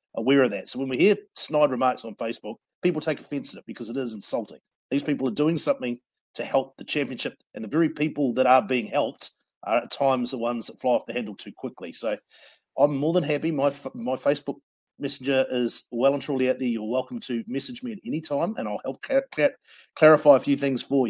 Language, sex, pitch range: English, male, 125-155 Hz